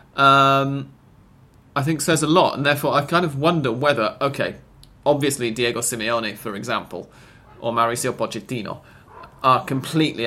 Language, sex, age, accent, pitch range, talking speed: English, male, 30-49, British, 115-140 Hz, 140 wpm